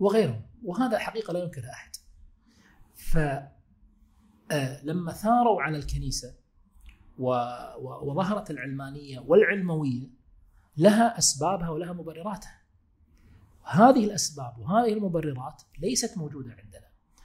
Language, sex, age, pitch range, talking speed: Arabic, male, 40-59, 120-175 Hz, 85 wpm